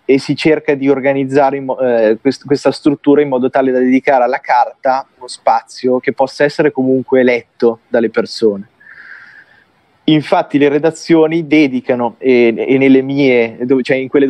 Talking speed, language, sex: 160 wpm, Italian, male